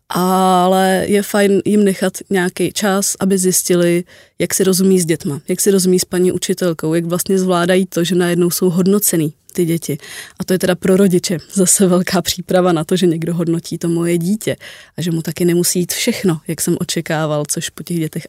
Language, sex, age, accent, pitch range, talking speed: Czech, female, 20-39, native, 175-200 Hz, 200 wpm